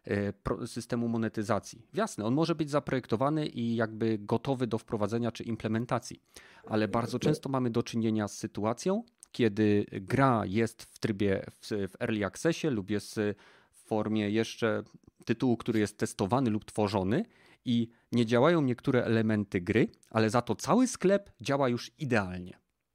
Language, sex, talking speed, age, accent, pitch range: Polish, male, 145 wpm, 30-49, native, 105-125 Hz